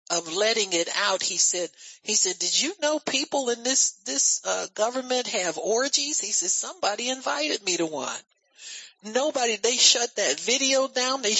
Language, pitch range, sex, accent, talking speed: English, 155-255 Hz, male, American, 175 wpm